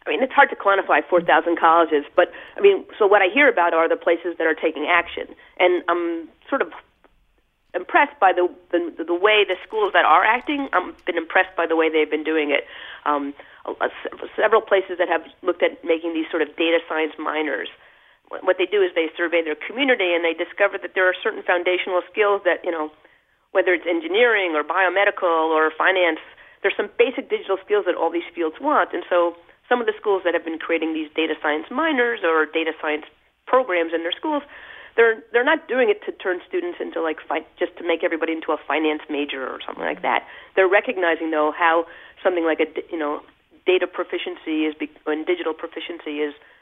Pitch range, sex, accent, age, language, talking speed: 160-205 Hz, female, American, 40-59, English, 205 wpm